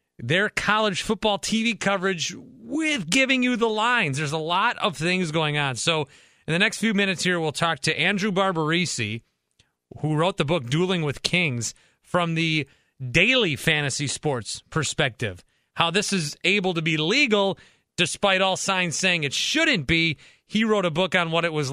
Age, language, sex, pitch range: 30-49, English, male, 145-185 Hz